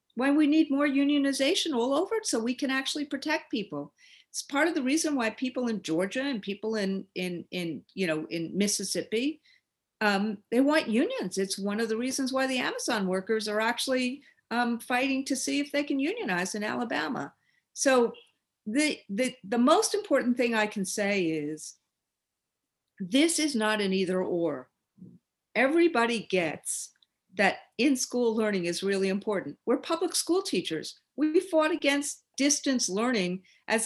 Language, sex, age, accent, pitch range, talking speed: English, female, 50-69, American, 200-275 Hz, 165 wpm